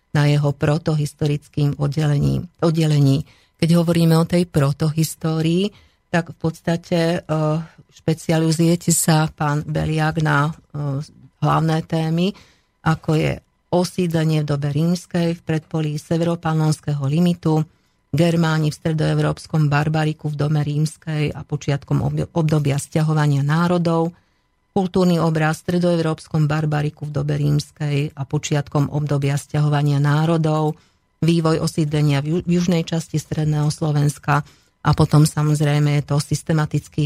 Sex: female